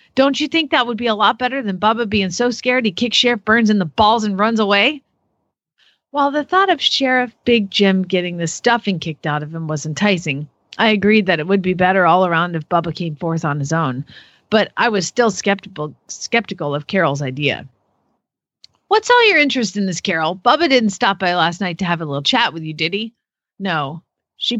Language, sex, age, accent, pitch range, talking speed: English, female, 40-59, American, 175-235 Hz, 215 wpm